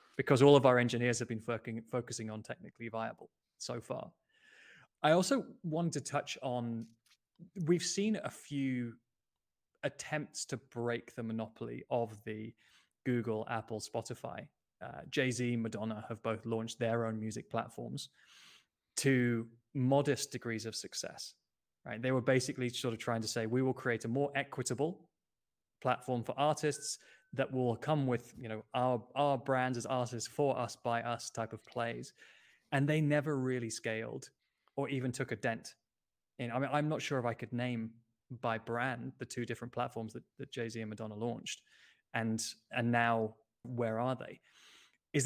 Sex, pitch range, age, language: male, 115-140 Hz, 20-39, English